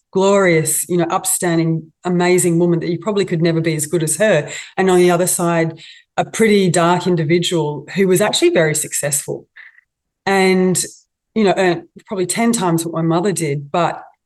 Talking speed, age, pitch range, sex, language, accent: 175 wpm, 30-49, 165-195 Hz, female, English, Australian